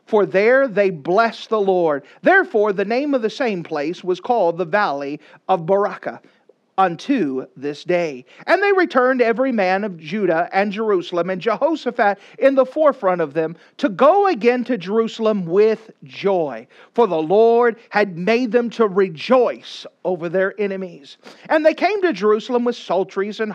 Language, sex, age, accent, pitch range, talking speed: English, male, 40-59, American, 175-245 Hz, 165 wpm